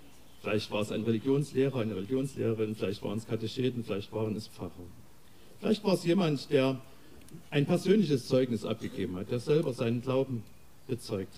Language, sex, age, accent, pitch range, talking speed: German, male, 50-69, German, 110-160 Hz, 160 wpm